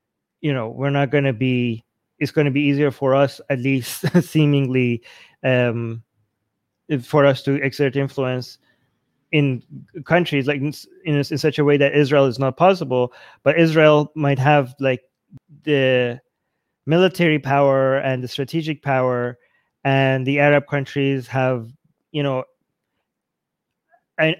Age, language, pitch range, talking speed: 20-39, English, 130-150 Hz, 140 wpm